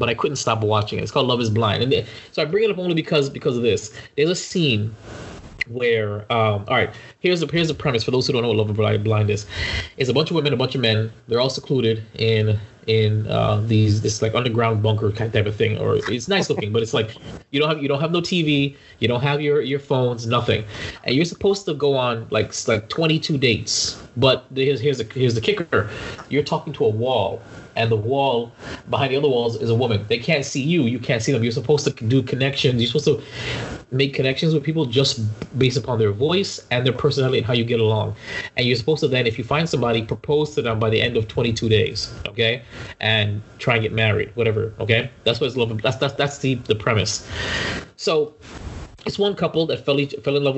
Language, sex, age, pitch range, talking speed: English, male, 20-39, 110-145 Hz, 240 wpm